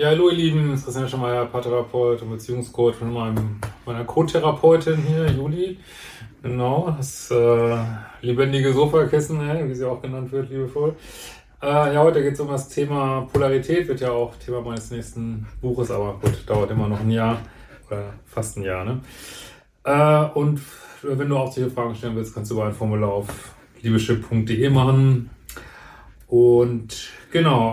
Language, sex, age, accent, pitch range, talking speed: German, male, 30-49, German, 115-140 Hz, 170 wpm